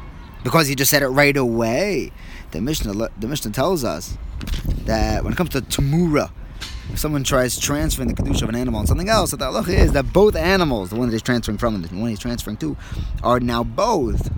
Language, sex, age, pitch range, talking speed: English, male, 20-39, 105-160 Hz, 215 wpm